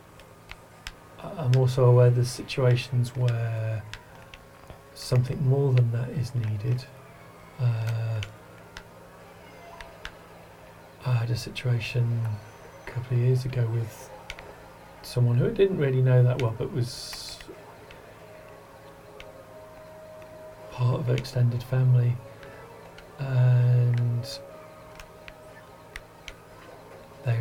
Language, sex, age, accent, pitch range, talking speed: English, male, 40-59, British, 120-135 Hz, 85 wpm